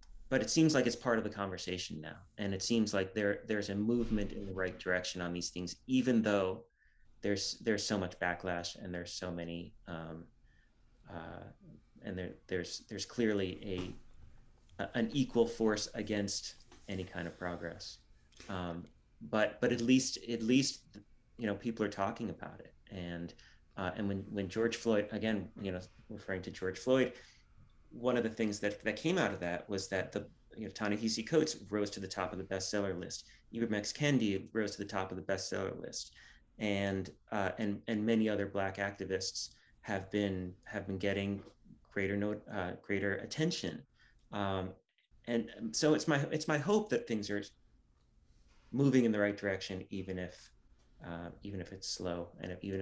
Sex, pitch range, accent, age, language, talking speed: male, 90-110 Hz, American, 30-49, English, 185 wpm